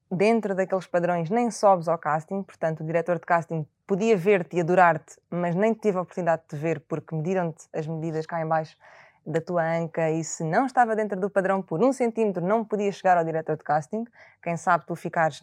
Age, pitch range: 20-39, 160-225 Hz